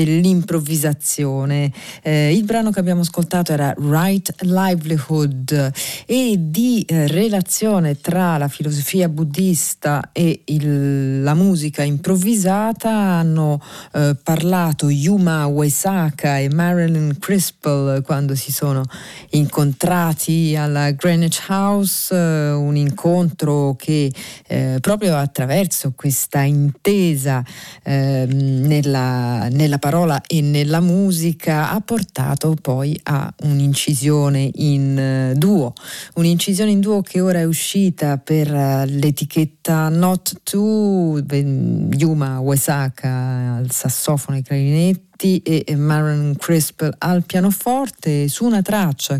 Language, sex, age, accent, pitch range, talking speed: Italian, female, 40-59, native, 140-180 Hz, 105 wpm